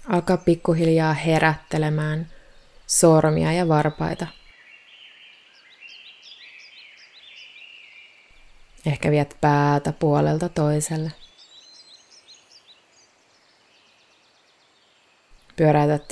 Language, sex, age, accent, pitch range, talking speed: Finnish, female, 20-39, native, 150-175 Hz, 45 wpm